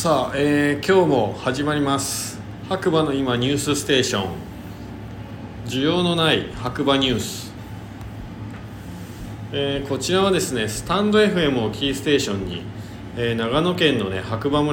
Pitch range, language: 105-140 Hz, Japanese